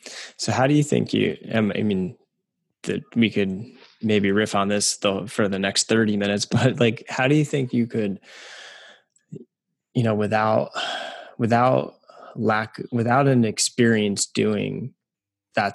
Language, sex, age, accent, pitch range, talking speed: English, male, 20-39, American, 100-115 Hz, 145 wpm